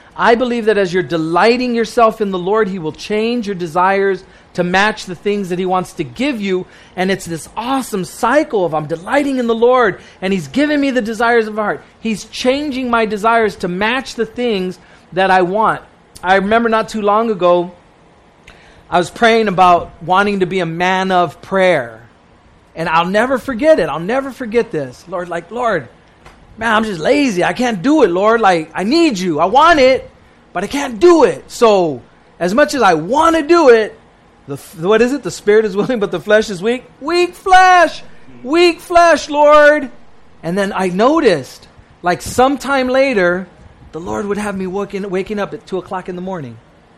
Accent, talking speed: American, 195 wpm